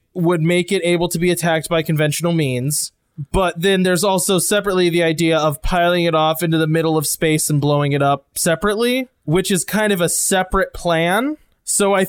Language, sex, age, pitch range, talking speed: English, male, 20-39, 160-190 Hz, 200 wpm